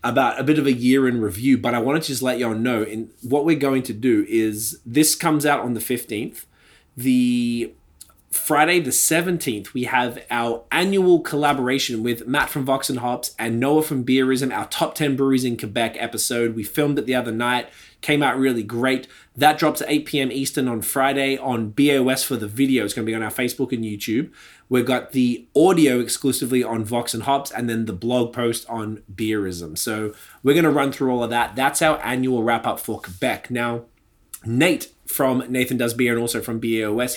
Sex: male